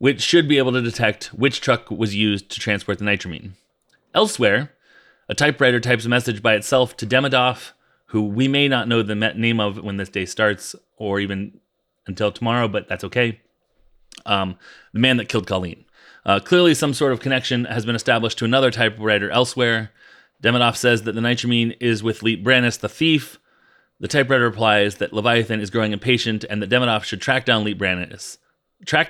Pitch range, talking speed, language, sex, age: 105-125 Hz, 185 wpm, English, male, 30-49